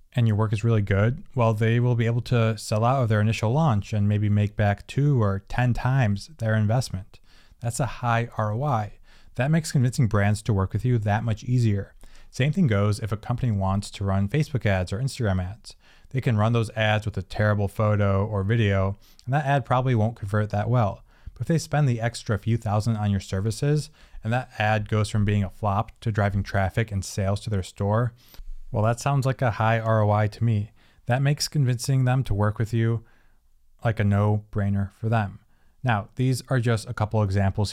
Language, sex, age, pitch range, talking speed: English, male, 20-39, 100-120 Hz, 210 wpm